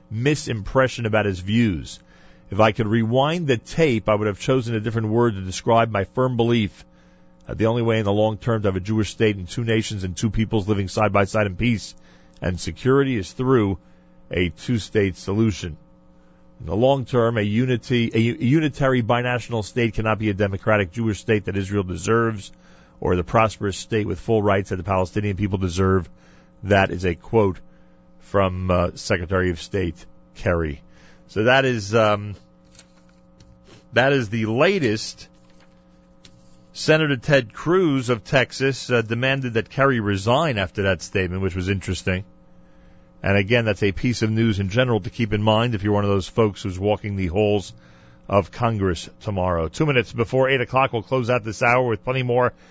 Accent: American